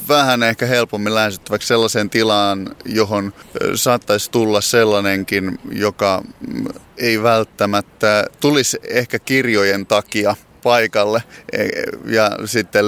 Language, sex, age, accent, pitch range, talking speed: Finnish, male, 30-49, native, 100-115 Hz, 95 wpm